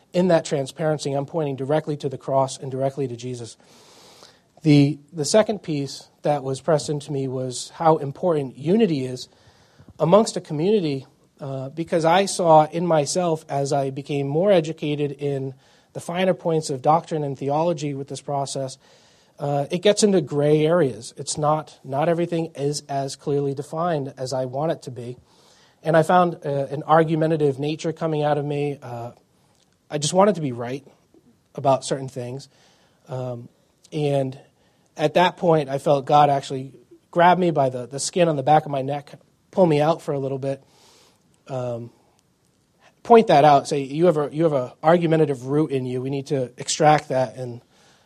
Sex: male